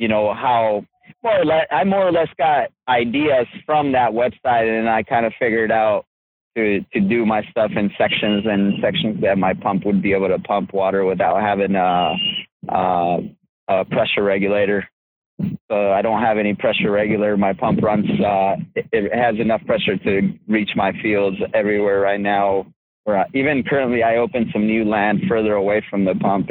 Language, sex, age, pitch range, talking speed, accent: English, male, 20-39, 100-115 Hz, 180 wpm, American